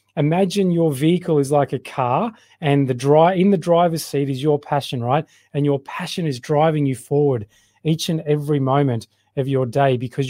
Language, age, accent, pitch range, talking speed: English, 30-49, Australian, 130-165 Hz, 190 wpm